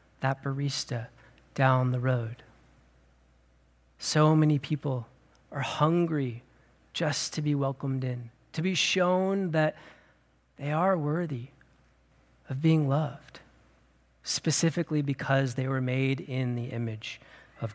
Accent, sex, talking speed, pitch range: American, male, 115 wpm, 130-170 Hz